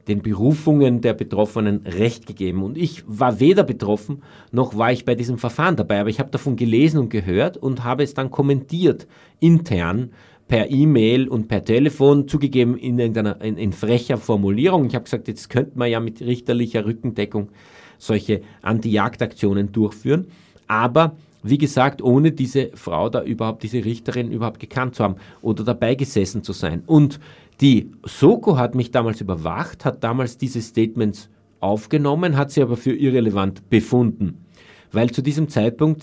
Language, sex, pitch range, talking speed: German, male, 105-135 Hz, 160 wpm